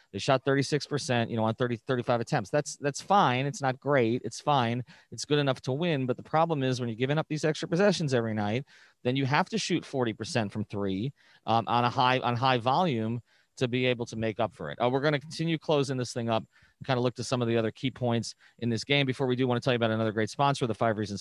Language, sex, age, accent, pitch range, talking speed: English, male, 30-49, American, 110-140 Hz, 270 wpm